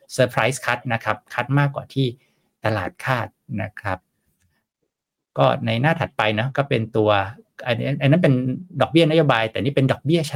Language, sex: Thai, male